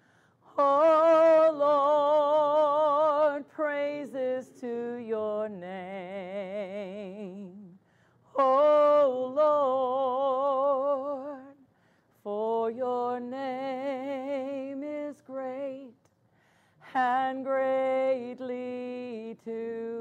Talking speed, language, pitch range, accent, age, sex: 50 wpm, English, 200-265 Hz, American, 40-59, female